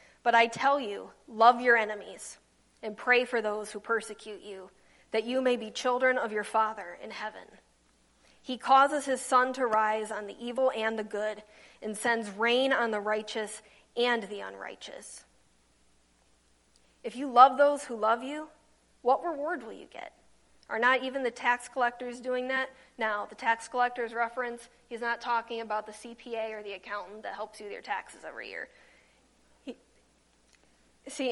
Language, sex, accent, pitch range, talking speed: English, female, American, 215-250 Hz, 170 wpm